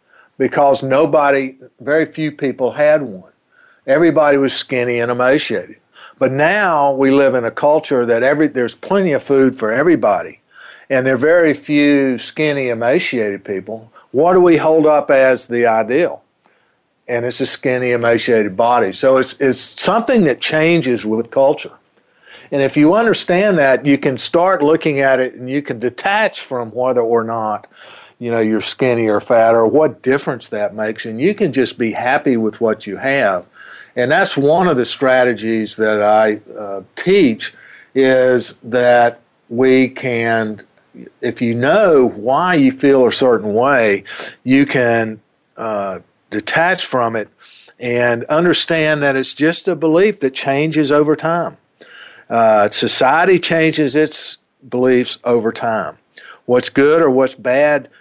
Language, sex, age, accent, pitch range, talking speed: English, male, 50-69, American, 120-150 Hz, 155 wpm